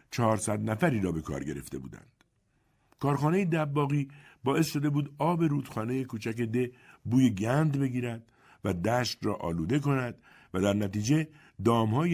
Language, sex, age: Persian, male, 50-69